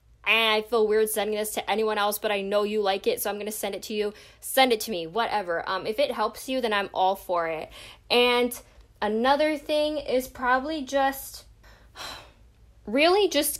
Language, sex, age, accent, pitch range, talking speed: English, female, 10-29, American, 175-225 Hz, 200 wpm